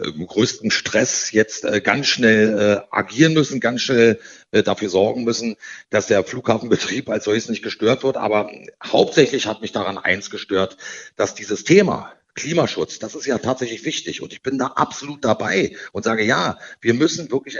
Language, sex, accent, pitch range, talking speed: German, male, German, 105-135 Hz, 165 wpm